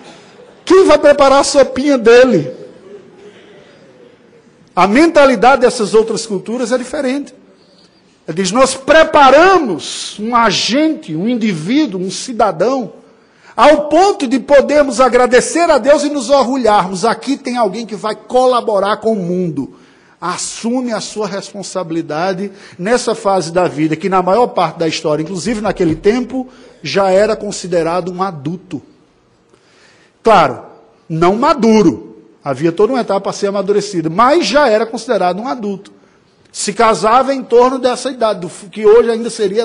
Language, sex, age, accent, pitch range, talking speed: Portuguese, male, 50-69, Brazilian, 190-255 Hz, 140 wpm